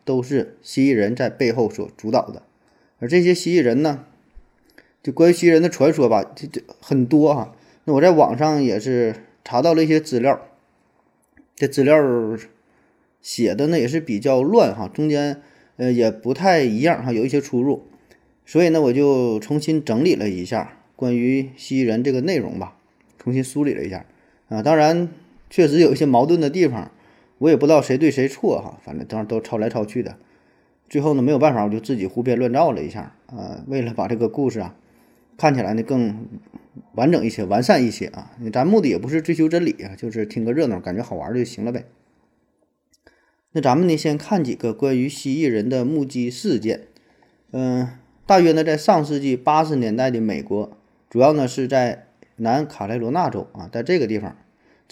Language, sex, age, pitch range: Chinese, male, 20-39, 120-155 Hz